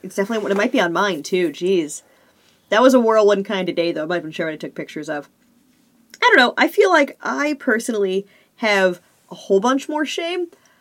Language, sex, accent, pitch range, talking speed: English, female, American, 170-230 Hz, 230 wpm